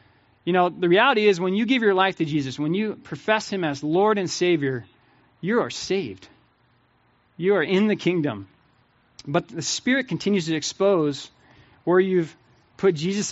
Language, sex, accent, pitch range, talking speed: English, male, American, 130-185 Hz, 170 wpm